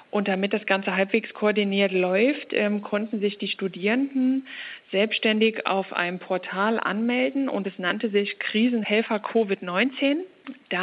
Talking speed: 125 wpm